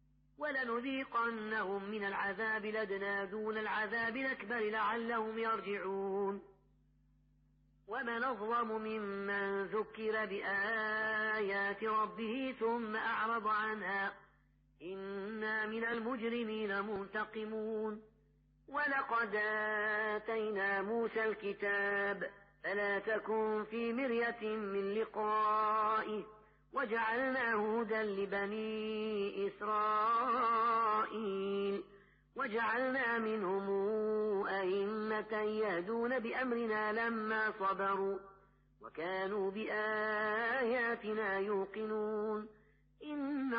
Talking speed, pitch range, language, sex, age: 65 wpm, 200-225 Hz, Arabic, female, 30-49